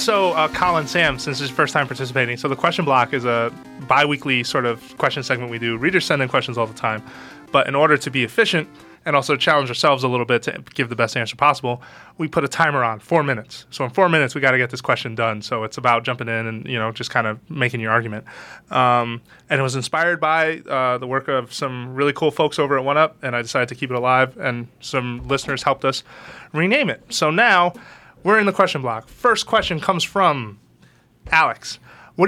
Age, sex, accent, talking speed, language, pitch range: 20-39, male, American, 230 wpm, English, 120-155 Hz